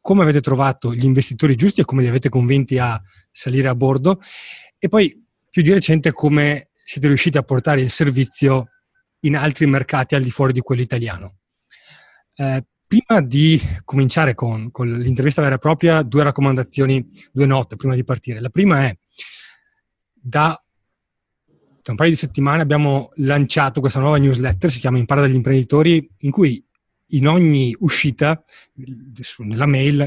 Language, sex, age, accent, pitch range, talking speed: Italian, male, 30-49, native, 130-155 Hz, 160 wpm